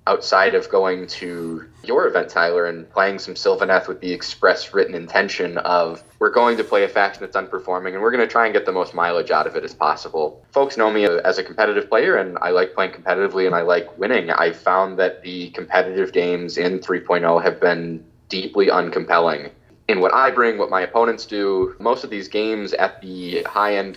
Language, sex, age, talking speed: English, male, 20-39, 210 wpm